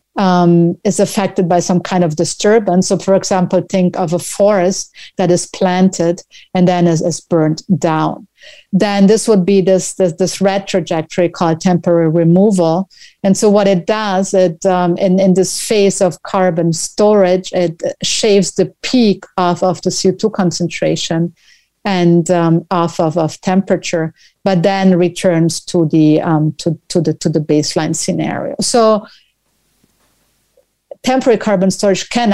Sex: female